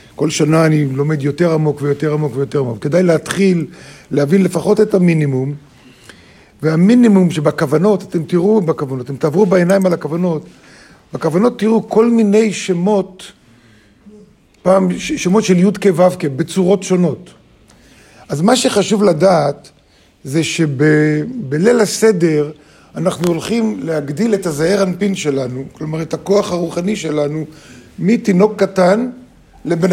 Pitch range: 150-205 Hz